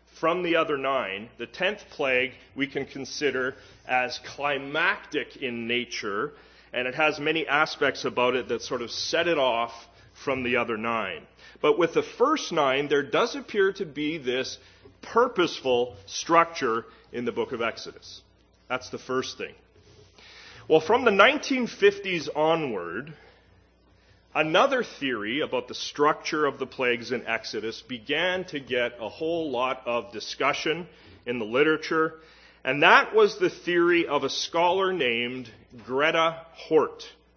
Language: English